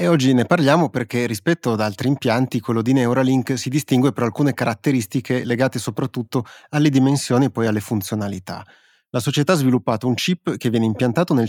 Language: Italian